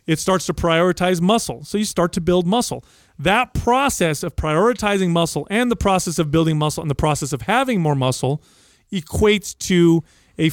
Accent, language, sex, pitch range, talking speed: American, English, male, 145-195 Hz, 180 wpm